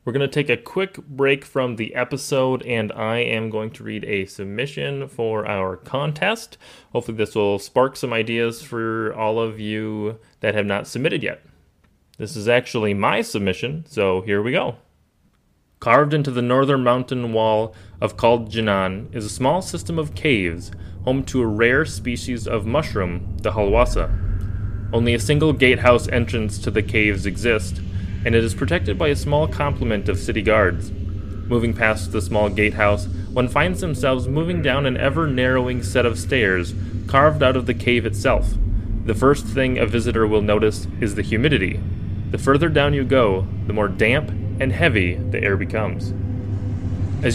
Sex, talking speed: male, 170 wpm